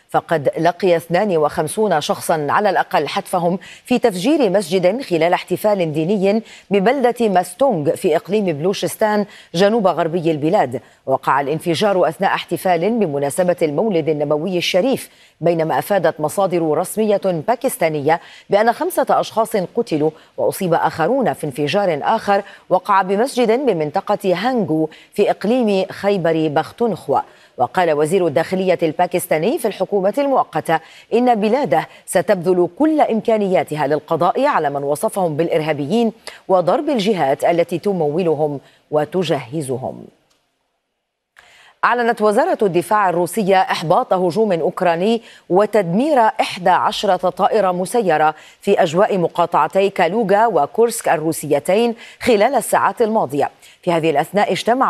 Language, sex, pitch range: Arabic, female, 165-220 Hz